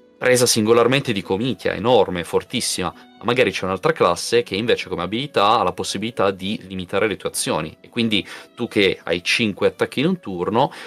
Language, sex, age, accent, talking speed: Italian, male, 30-49, native, 180 wpm